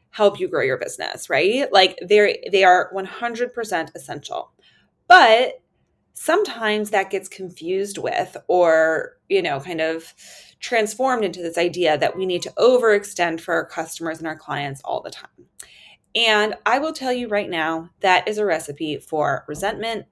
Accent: American